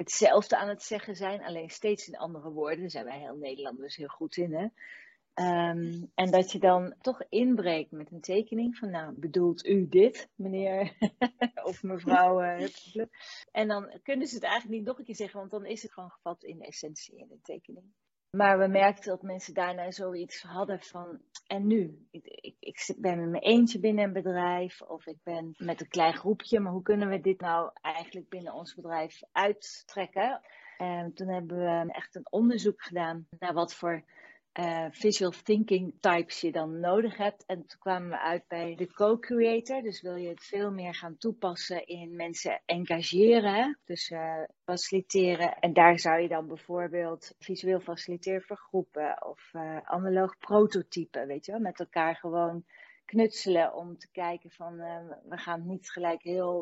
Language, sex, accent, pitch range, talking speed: Dutch, female, Dutch, 170-205 Hz, 180 wpm